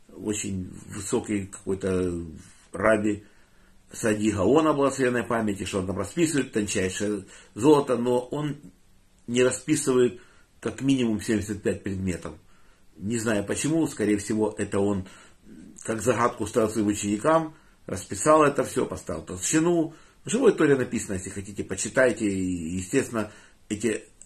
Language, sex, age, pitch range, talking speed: Russian, male, 50-69, 95-125 Hz, 115 wpm